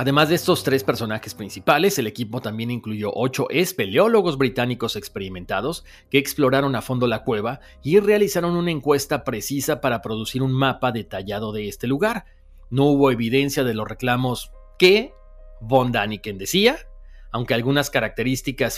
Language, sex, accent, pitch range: Spanish, male, Mexican, 115-150 Hz